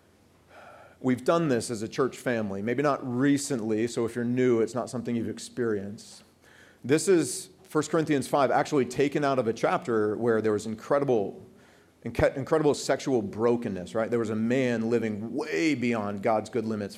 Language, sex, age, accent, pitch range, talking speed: English, male, 40-59, American, 110-140 Hz, 170 wpm